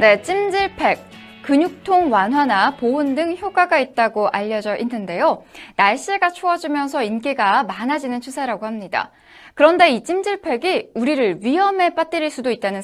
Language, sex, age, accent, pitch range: Korean, female, 20-39, native, 230-340 Hz